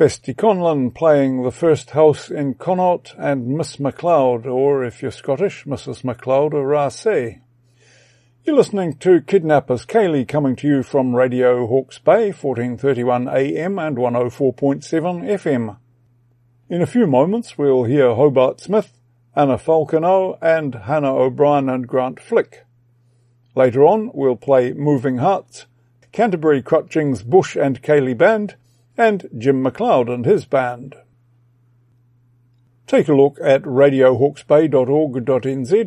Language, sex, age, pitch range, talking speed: English, male, 50-69, 125-155 Hz, 125 wpm